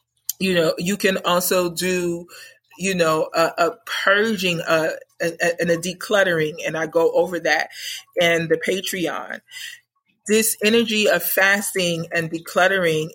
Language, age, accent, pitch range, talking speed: English, 30-49, American, 170-200 Hz, 130 wpm